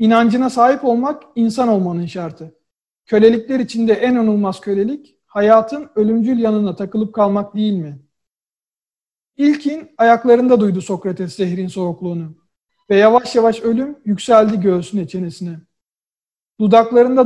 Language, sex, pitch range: Turkish, male, 190-240 Hz